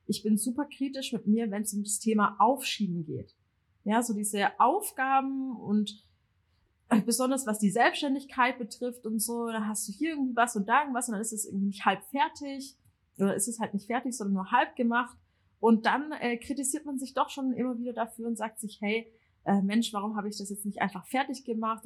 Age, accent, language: 30-49, German, German